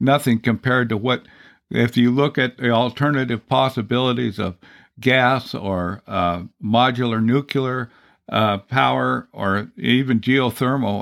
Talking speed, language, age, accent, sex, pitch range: 120 wpm, English, 60-79, American, male, 110-135 Hz